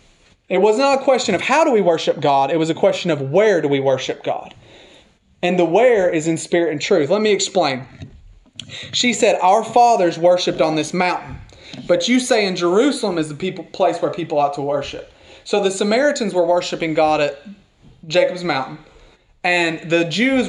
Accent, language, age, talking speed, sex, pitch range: American, English, 30-49, 195 wpm, male, 160-205 Hz